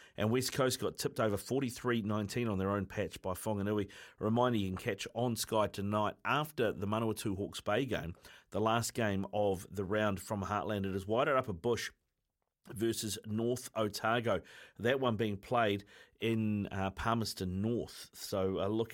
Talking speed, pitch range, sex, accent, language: 175 wpm, 100-120 Hz, male, Australian, English